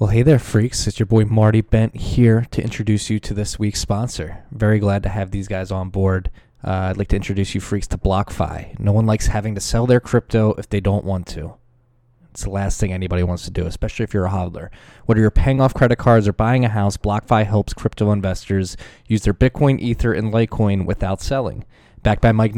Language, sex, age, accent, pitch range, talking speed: English, male, 20-39, American, 100-120 Hz, 225 wpm